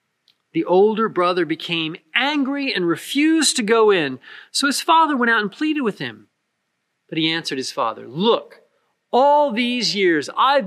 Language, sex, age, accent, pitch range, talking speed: English, male, 40-59, American, 165-245 Hz, 165 wpm